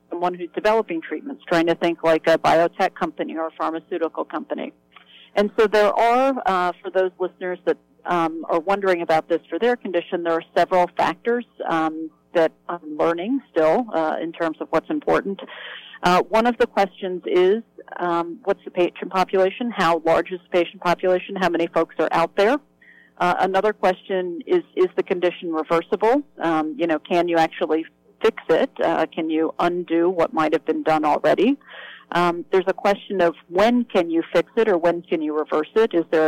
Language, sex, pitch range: English, female, 165-195 Hz